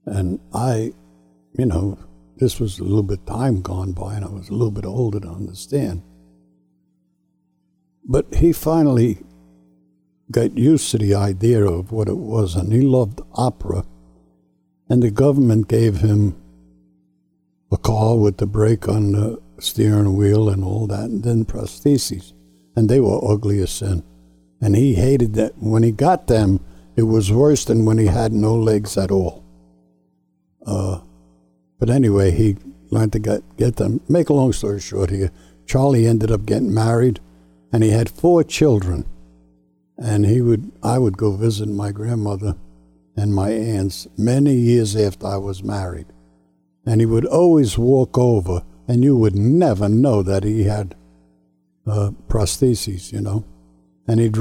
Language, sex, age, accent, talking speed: English, male, 60-79, American, 160 wpm